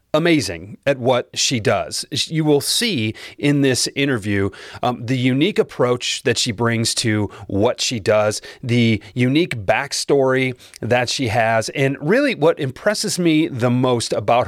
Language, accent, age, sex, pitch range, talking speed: English, American, 30-49, male, 105-145 Hz, 150 wpm